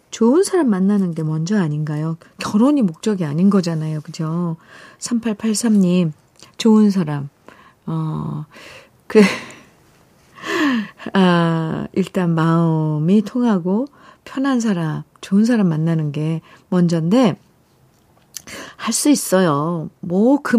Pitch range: 165-225 Hz